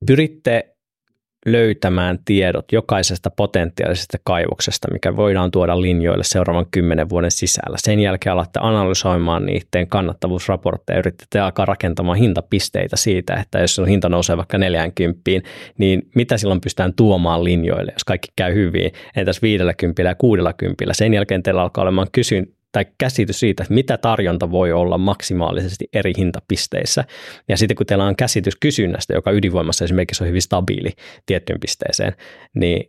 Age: 20-39